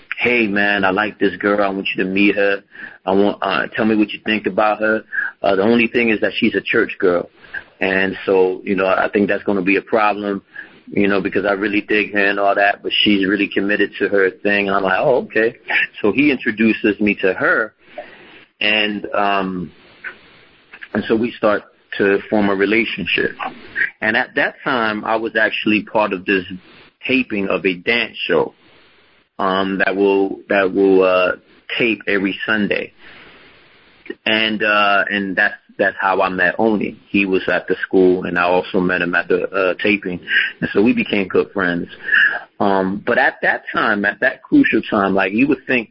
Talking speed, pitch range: 190 wpm, 95-105 Hz